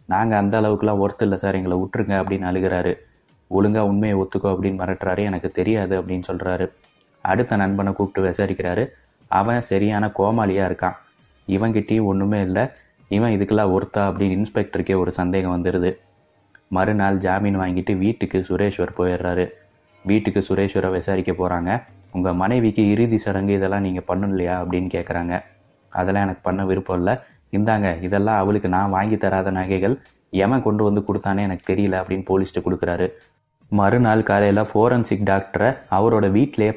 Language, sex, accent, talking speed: Tamil, male, native, 135 wpm